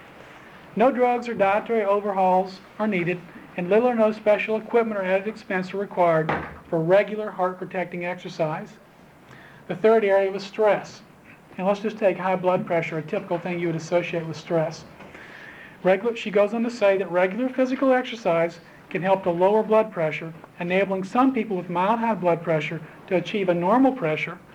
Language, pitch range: English, 175-210 Hz